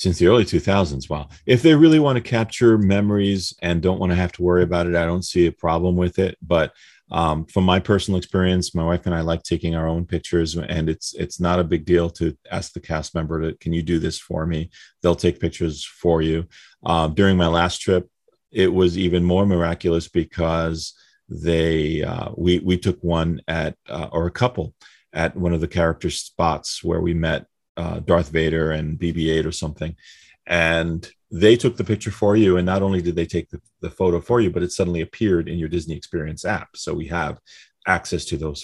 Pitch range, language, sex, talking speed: 80-95 Hz, English, male, 215 wpm